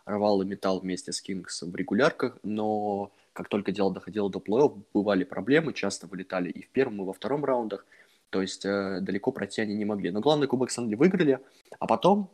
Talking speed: 195 wpm